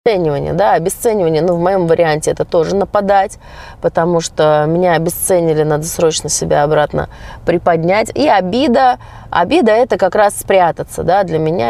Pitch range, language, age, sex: 155-195 Hz, Russian, 30-49, female